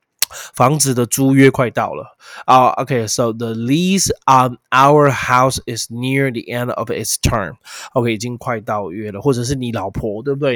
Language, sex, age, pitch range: Chinese, male, 20-39, 110-135 Hz